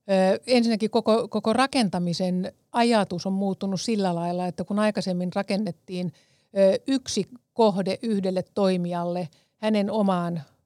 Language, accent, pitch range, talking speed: Finnish, native, 180-215 Hz, 105 wpm